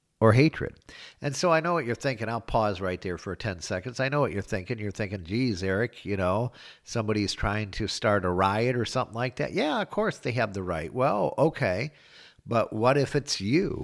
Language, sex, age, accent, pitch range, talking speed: English, male, 50-69, American, 95-115 Hz, 220 wpm